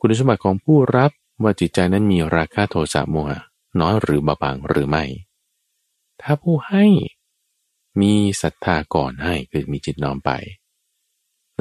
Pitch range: 75-120 Hz